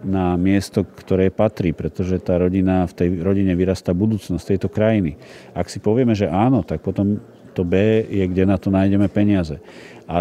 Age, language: 40-59, Slovak